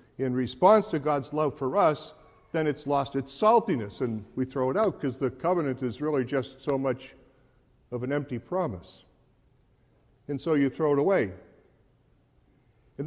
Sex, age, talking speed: male, 60-79, 165 wpm